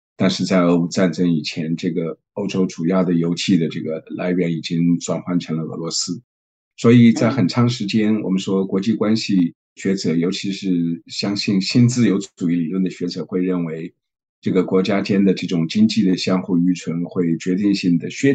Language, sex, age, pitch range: Chinese, male, 50-69, 85-95 Hz